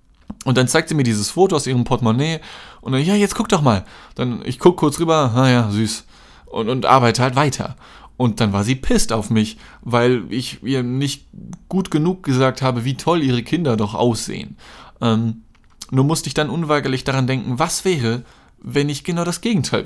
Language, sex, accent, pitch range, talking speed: German, male, German, 120-170 Hz, 195 wpm